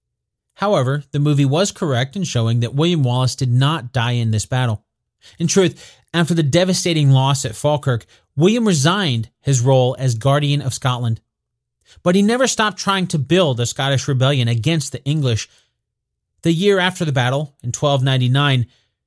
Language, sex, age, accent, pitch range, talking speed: English, male, 30-49, American, 120-165 Hz, 165 wpm